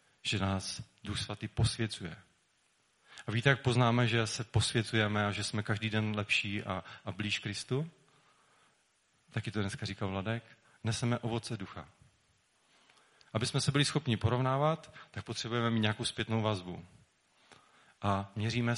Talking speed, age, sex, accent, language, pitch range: 140 wpm, 30-49, male, native, Czech, 105-120 Hz